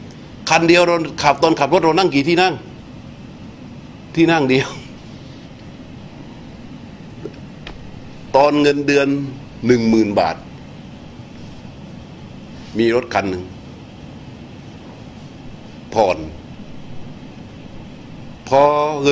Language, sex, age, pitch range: Thai, male, 60-79, 120-155 Hz